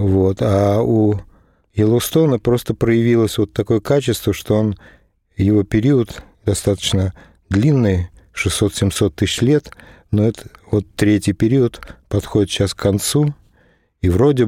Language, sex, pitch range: Russian, male, 95-110 Hz